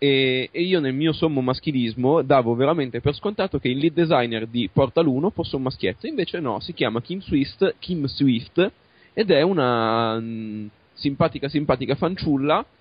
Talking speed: 155 wpm